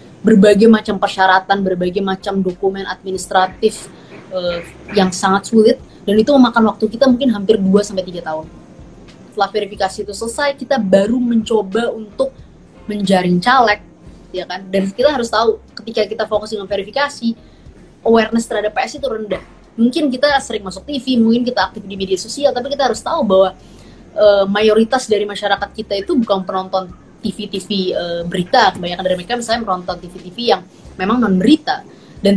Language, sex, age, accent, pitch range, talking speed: Indonesian, female, 20-39, native, 185-230 Hz, 150 wpm